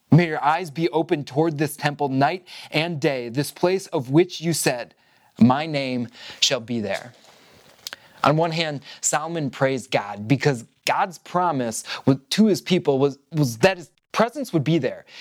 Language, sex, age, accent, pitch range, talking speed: English, male, 20-39, American, 135-180 Hz, 165 wpm